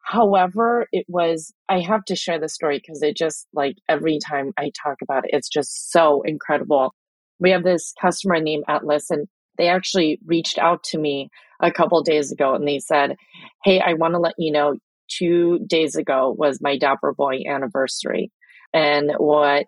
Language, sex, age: English, female, 30-49